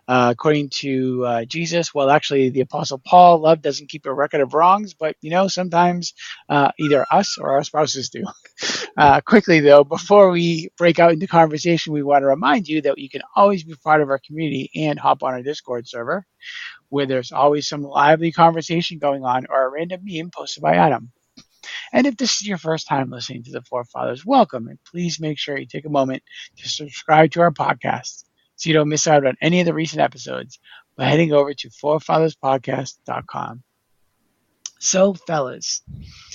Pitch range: 135-165 Hz